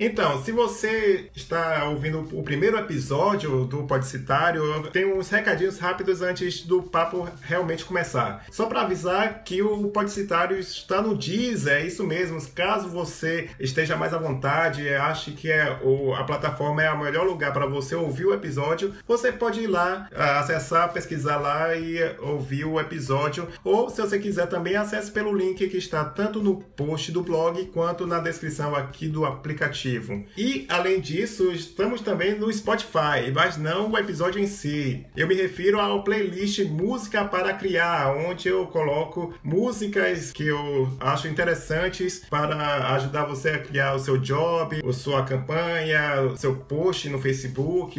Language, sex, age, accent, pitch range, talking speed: Portuguese, male, 20-39, Brazilian, 150-195 Hz, 160 wpm